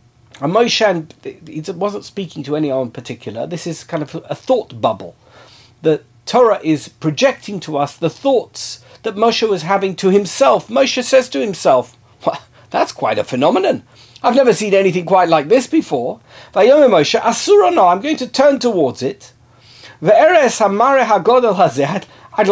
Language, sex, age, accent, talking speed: English, male, 40-59, British, 140 wpm